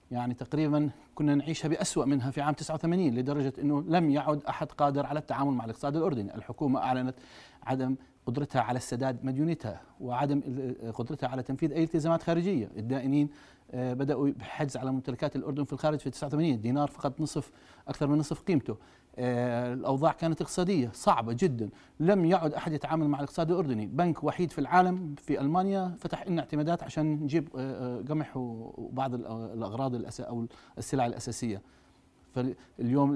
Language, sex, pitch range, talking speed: Arabic, male, 120-150 Hz, 150 wpm